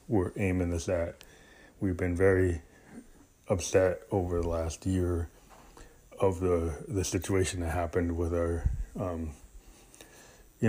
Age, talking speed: 20-39, 125 wpm